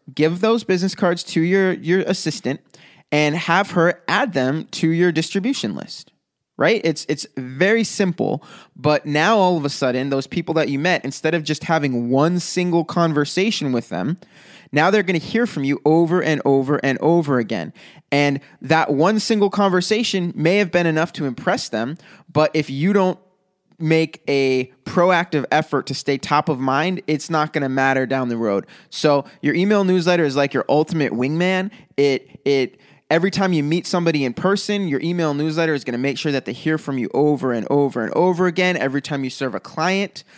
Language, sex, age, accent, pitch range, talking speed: English, male, 20-39, American, 140-180 Hz, 195 wpm